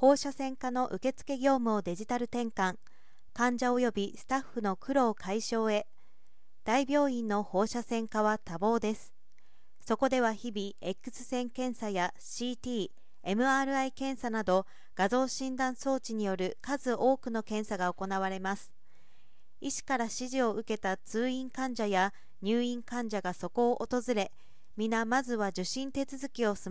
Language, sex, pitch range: Japanese, female, 210-255 Hz